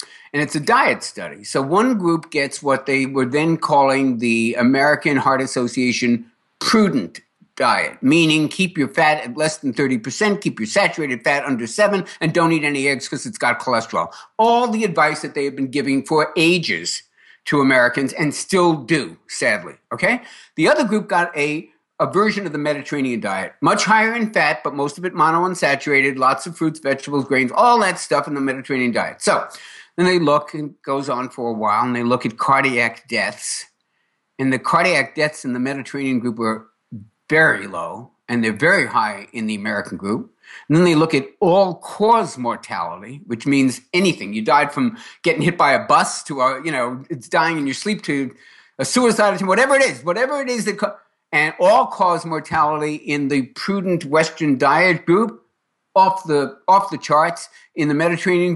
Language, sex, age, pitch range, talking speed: English, male, 60-79, 135-180 Hz, 190 wpm